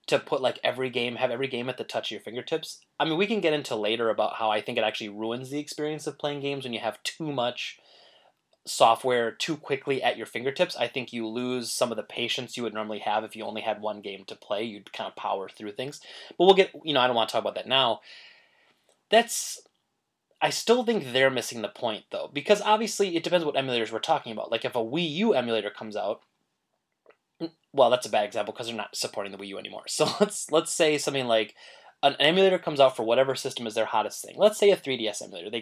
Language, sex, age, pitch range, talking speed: English, male, 20-39, 115-165 Hz, 245 wpm